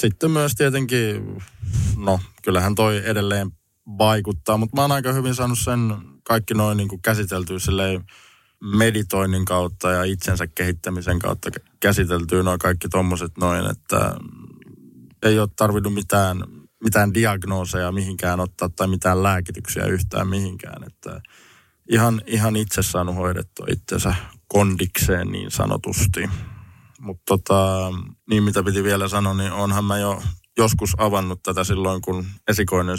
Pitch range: 90-105 Hz